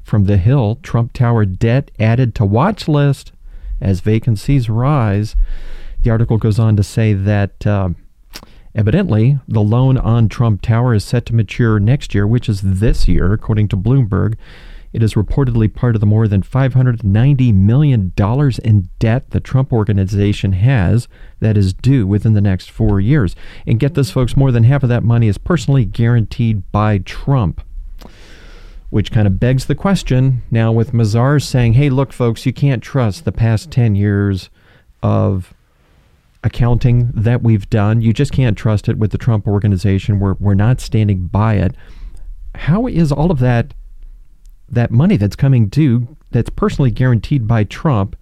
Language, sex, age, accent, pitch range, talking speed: English, male, 40-59, American, 100-125 Hz, 165 wpm